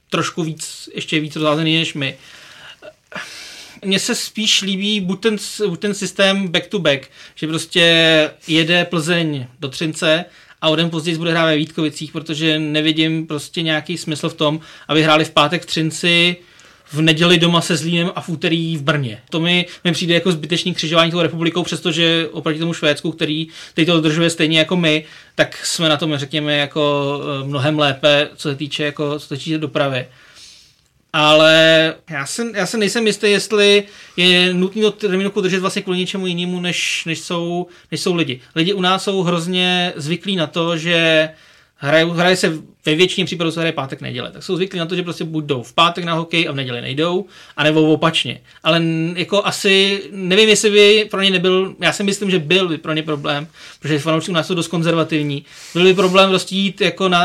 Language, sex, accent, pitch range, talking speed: Czech, male, native, 155-180 Hz, 190 wpm